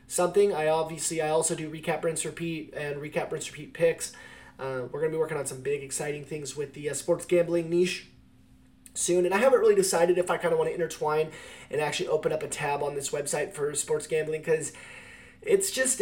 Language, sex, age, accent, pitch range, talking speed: English, male, 20-39, American, 155-235 Hz, 220 wpm